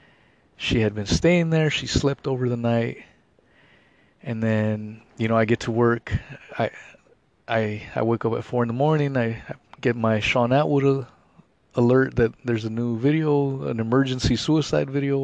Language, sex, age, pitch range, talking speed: English, male, 30-49, 110-130 Hz, 170 wpm